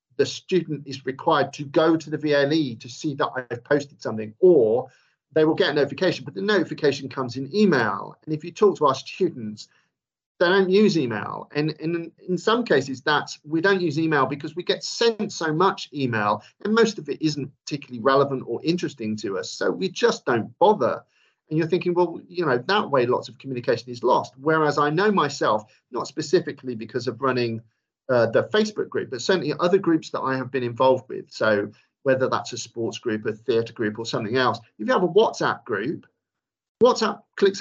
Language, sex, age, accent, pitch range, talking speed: English, male, 40-59, British, 130-180 Hz, 205 wpm